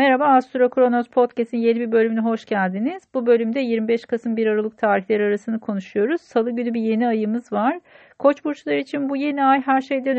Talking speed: 185 wpm